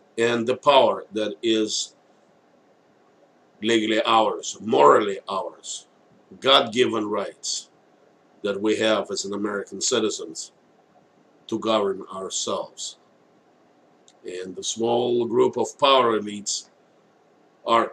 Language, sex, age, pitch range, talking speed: English, male, 50-69, 110-125 Hz, 95 wpm